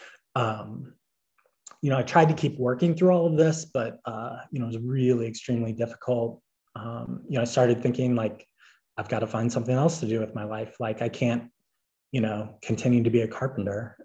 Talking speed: 210 wpm